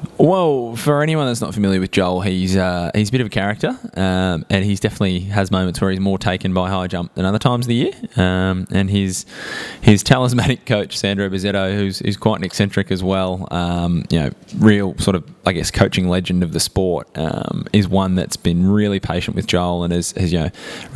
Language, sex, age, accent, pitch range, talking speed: English, male, 20-39, Australian, 90-105 Hz, 225 wpm